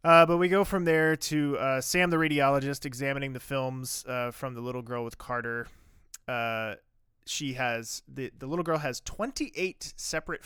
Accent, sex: American, male